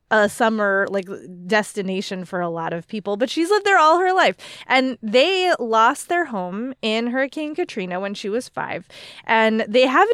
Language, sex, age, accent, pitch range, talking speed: English, female, 20-39, American, 200-265 Hz, 185 wpm